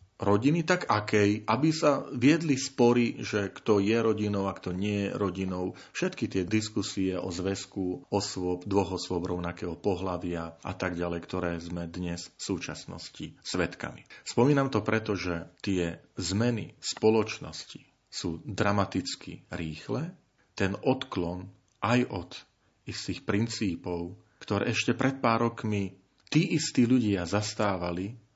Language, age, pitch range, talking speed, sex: Slovak, 40-59, 90-115 Hz, 125 wpm, male